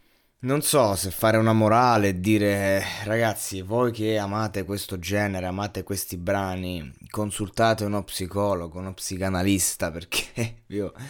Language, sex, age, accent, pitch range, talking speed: Italian, male, 20-39, native, 90-105 Hz, 135 wpm